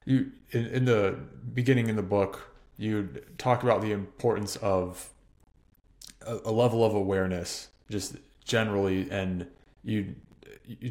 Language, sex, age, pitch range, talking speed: English, male, 20-39, 95-110 Hz, 130 wpm